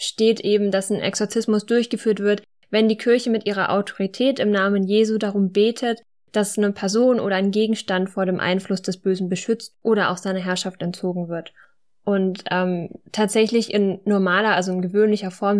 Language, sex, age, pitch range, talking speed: German, female, 10-29, 190-220 Hz, 175 wpm